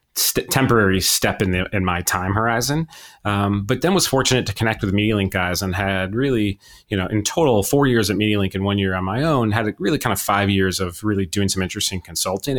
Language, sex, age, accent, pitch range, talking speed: English, male, 30-49, American, 95-110 Hz, 230 wpm